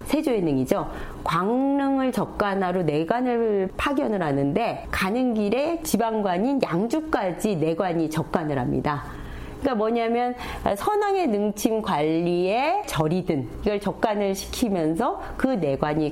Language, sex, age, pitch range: Korean, female, 40-59, 155-245 Hz